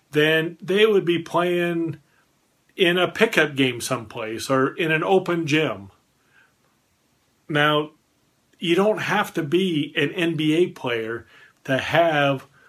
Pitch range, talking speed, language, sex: 130-165 Hz, 125 wpm, English, male